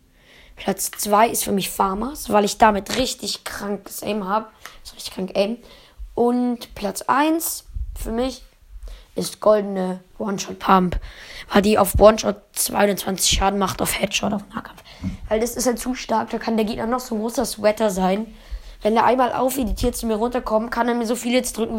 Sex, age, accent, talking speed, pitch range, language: female, 20-39, German, 185 wpm, 200-250 Hz, German